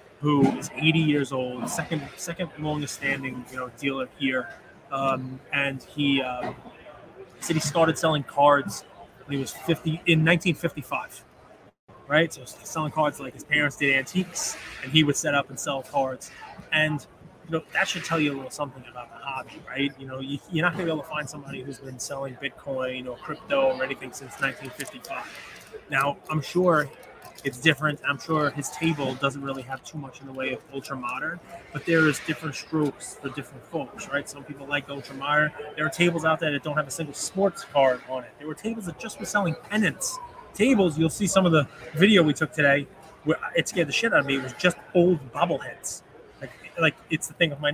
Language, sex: English, male